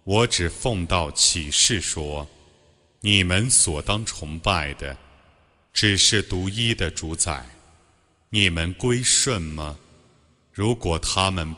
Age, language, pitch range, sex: 30-49, Chinese, 80-105 Hz, male